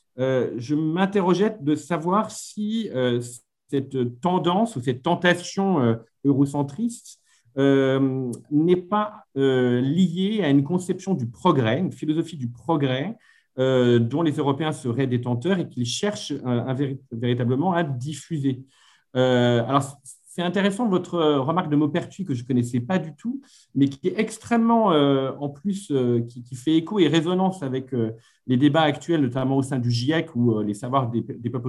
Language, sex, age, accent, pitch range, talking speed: French, male, 50-69, French, 120-165 Hz, 170 wpm